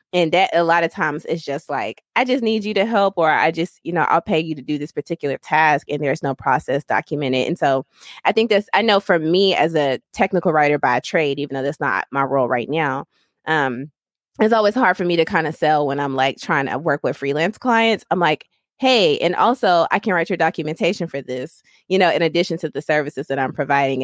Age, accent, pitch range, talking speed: 20-39, American, 155-205 Hz, 240 wpm